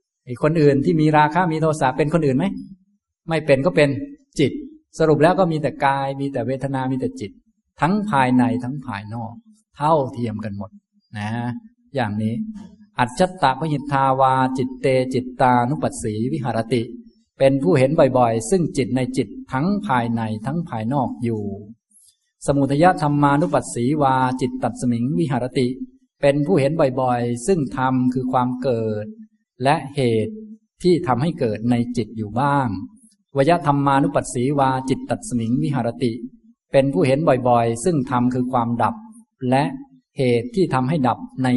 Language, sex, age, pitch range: Thai, male, 20-39, 120-165 Hz